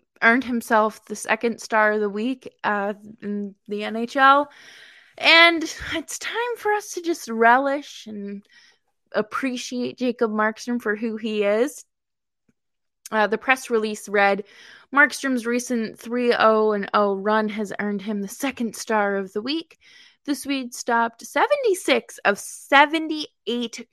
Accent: American